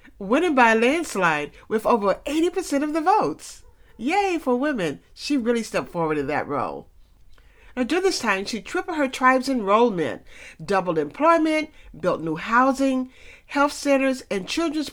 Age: 60-79